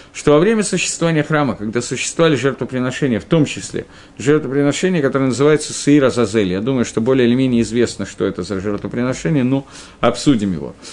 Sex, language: male, Russian